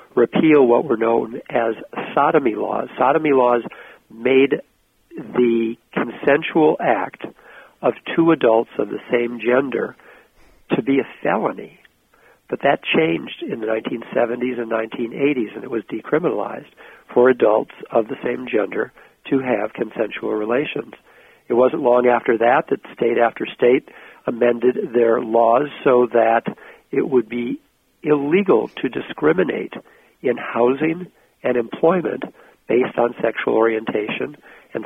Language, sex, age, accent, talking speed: English, male, 60-79, American, 130 wpm